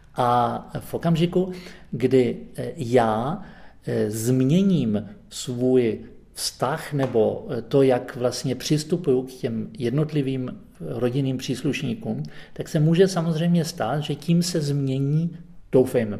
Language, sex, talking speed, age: Czech, male, 105 wpm, 40-59